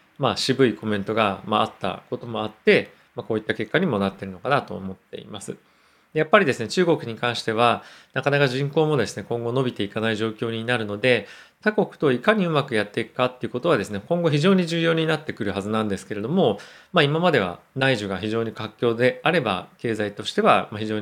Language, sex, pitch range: Japanese, male, 110-145 Hz